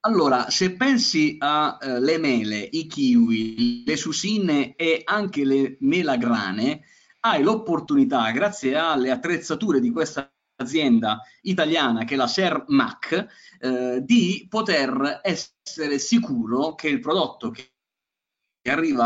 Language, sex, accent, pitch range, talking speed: Italian, male, native, 125-210 Hz, 115 wpm